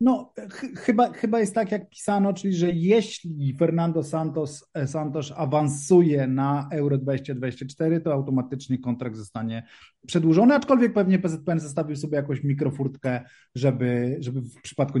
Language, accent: Polish, native